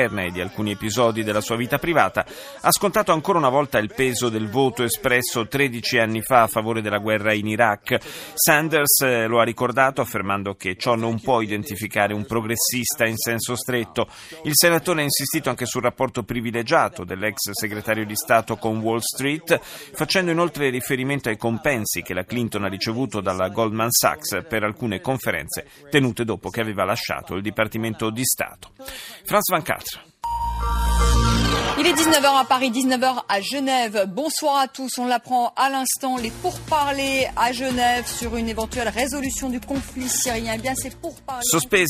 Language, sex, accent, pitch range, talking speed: Italian, male, native, 110-160 Hz, 155 wpm